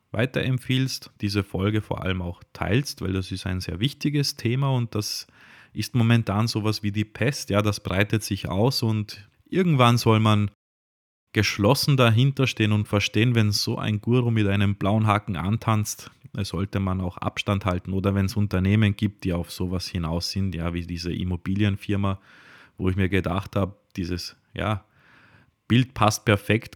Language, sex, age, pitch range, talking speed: German, male, 30-49, 95-125 Hz, 165 wpm